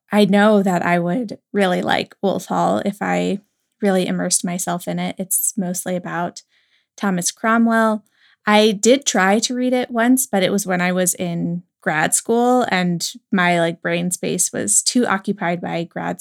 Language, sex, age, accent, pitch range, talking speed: English, female, 20-39, American, 180-250 Hz, 175 wpm